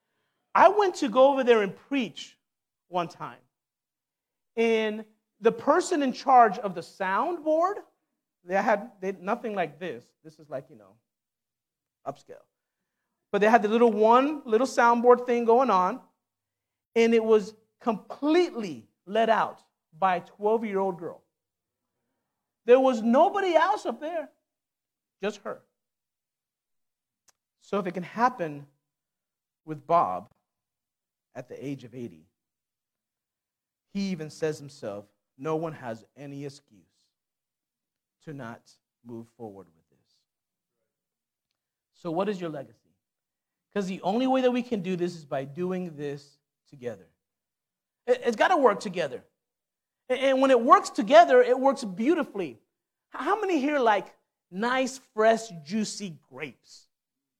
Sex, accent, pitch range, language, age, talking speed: male, American, 175-260 Hz, English, 40-59, 130 wpm